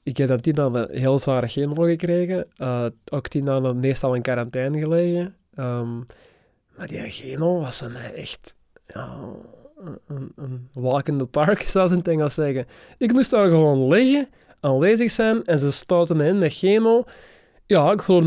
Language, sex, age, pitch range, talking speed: Dutch, male, 20-39, 145-195 Hz, 190 wpm